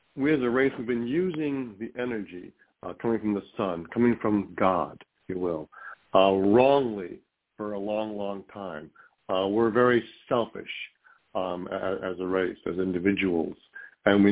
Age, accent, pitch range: 60-79, American, 100-125 Hz